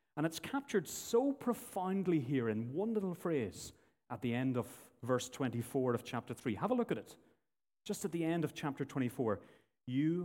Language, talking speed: English, 185 wpm